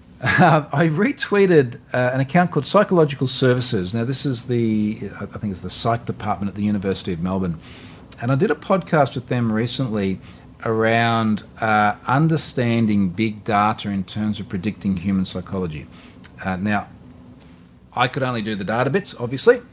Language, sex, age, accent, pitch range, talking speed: English, male, 40-59, Australian, 105-140 Hz, 160 wpm